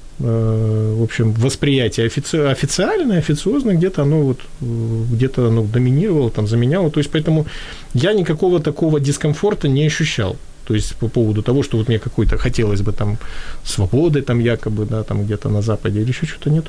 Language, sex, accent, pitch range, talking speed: Ukrainian, male, native, 115-145 Hz, 170 wpm